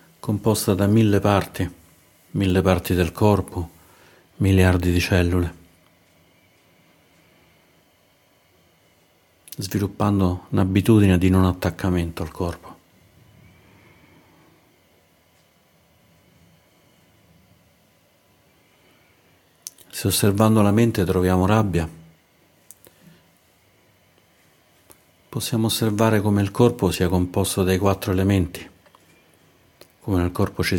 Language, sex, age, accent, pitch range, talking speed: Italian, male, 50-69, native, 85-95 Hz, 75 wpm